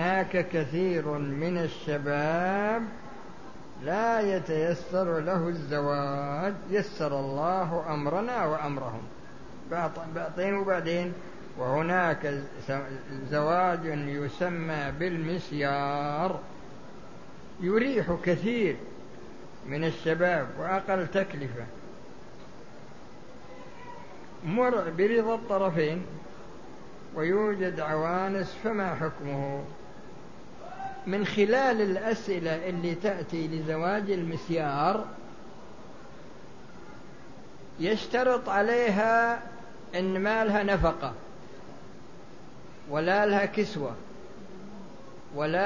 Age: 60-79